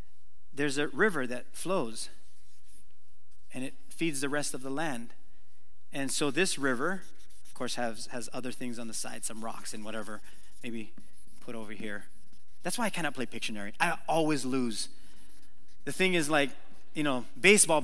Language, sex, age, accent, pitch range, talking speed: English, male, 30-49, American, 100-140 Hz, 170 wpm